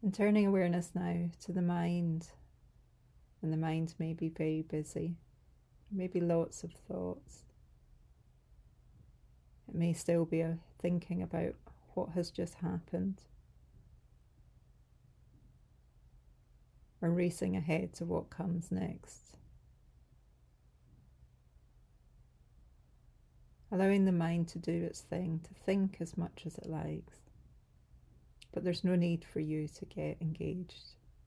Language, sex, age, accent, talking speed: English, female, 30-49, British, 115 wpm